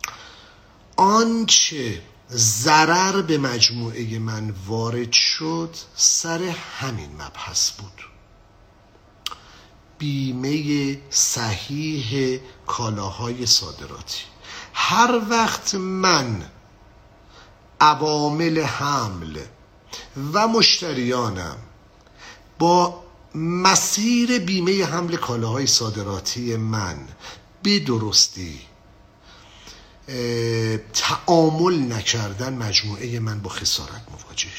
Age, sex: 50-69, male